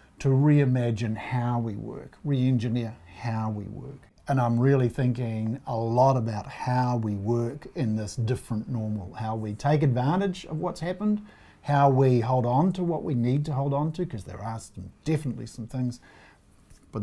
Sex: male